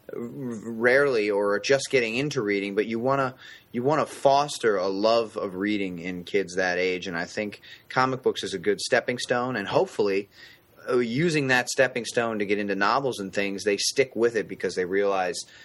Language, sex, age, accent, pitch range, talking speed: English, male, 30-49, American, 100-140 Hz, 195 wpm